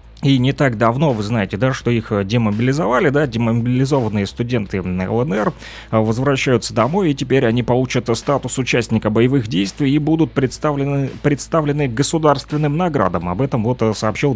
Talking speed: 140 wpm